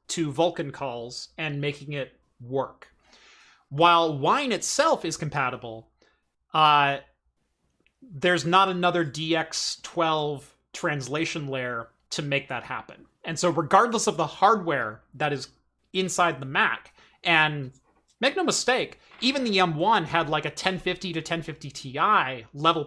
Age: 30-49